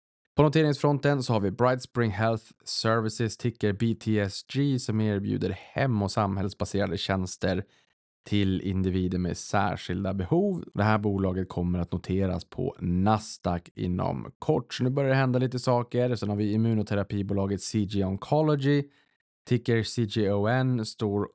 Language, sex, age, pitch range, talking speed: Swedish, male, 20-39, 95-115 Hz, 130 wpm